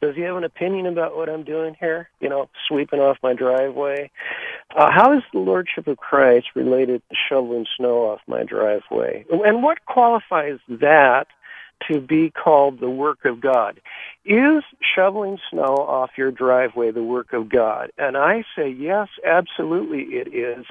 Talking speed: 170 wpm